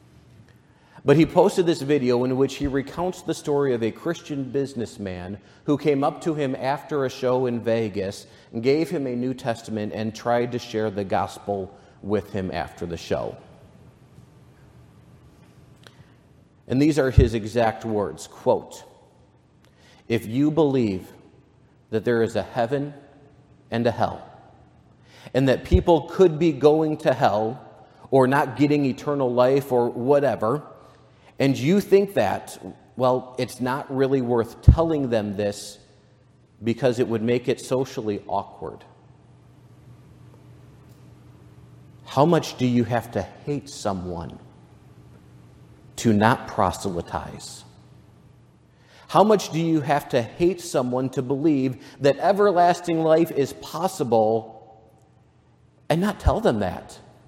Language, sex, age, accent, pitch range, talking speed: English, male, 40-59, American, 110-145 Hz, 130 wpm